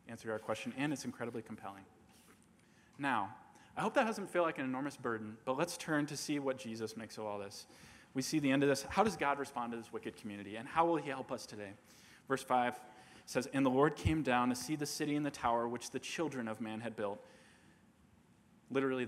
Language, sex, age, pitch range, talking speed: English, male, 20-39, 110-150 Hz, 230 wpm